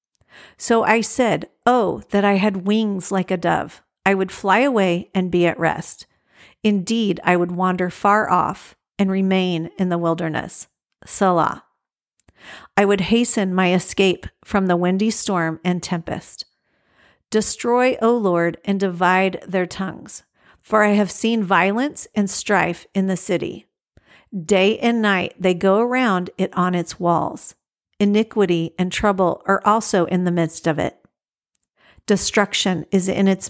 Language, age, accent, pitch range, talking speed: English, 50-69, American, 180-210 Hz, 150 wpm